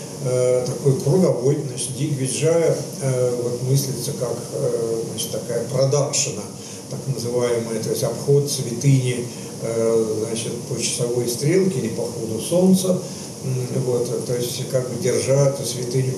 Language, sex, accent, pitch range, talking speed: Russian, male, native, 120-145 Hz, 135 wpm